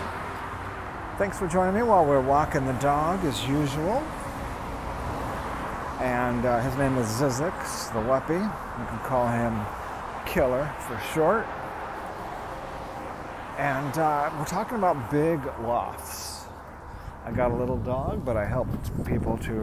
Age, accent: 40-59, American